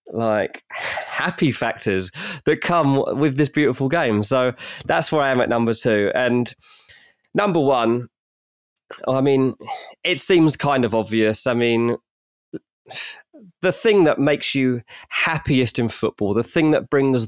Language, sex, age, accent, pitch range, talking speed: English, male, 20-39, British, 115-155 Hz, 140 wpm